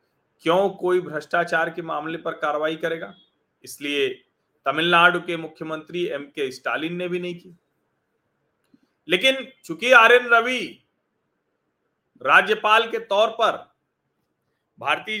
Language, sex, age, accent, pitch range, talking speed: Hindi, male, 40-59, native, 165-225 Hz, 105 wpm